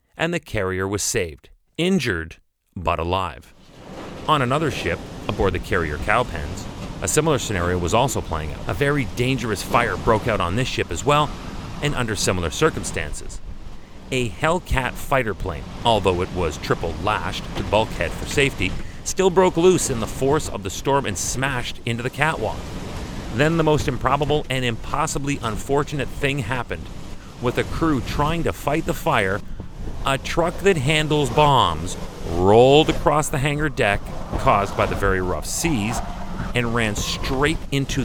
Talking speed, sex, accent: 160 wpm, male, American